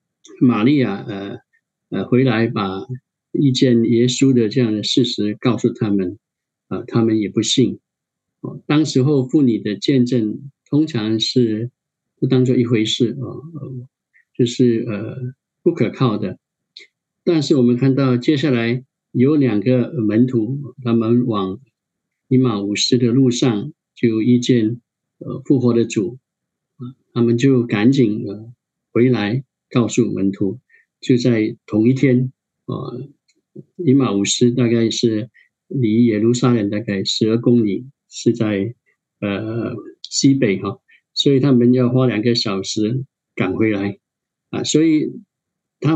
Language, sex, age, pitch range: Chinese, male, 50-69, 115-135 Hz